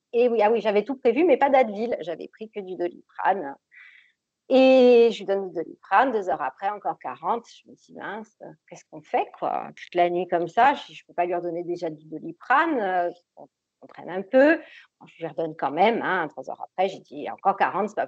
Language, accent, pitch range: French, French, 175-230 Hz